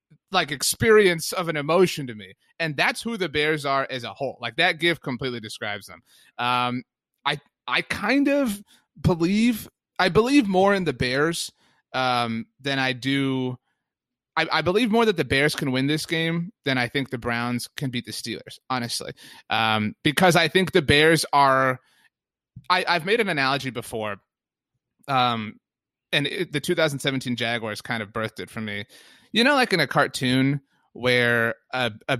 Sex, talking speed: male, 170 wpm